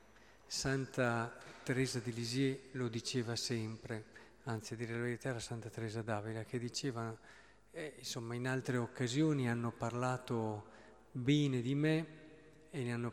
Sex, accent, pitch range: male, native, 115-130 Hz